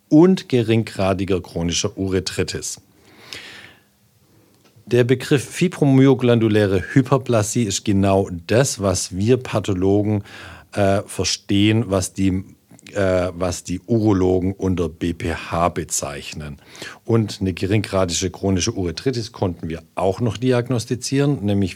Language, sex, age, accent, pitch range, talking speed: German, male, 50-69, German, 90-110 Hz, 95 wpm